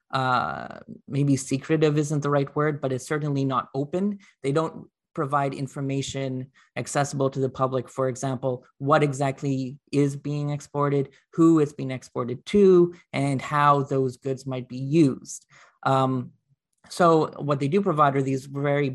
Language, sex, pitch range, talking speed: English, male, 130-145 Hz, 150 wpm